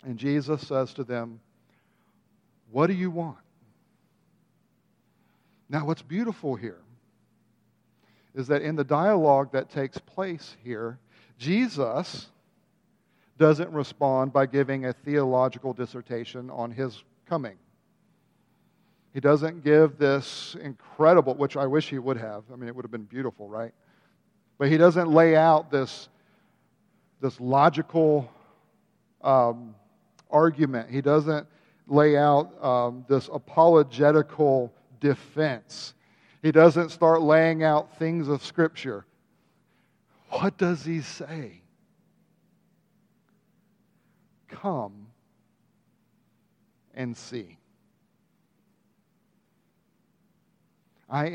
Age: 50-69